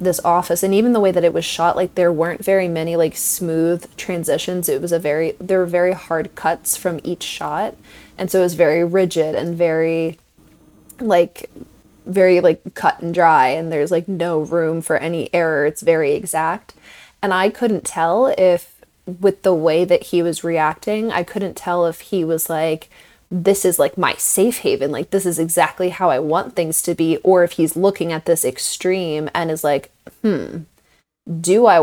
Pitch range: 165-195 Hz